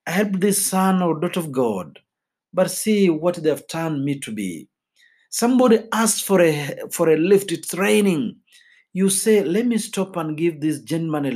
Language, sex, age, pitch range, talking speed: Swahili, male, 50-69, 145-215 Hz, 175 wpm